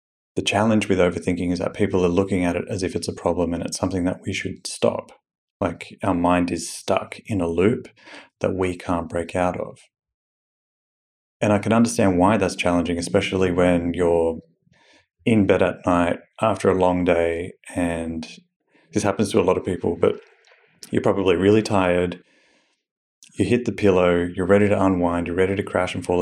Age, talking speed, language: 30-49, 190 wpm, English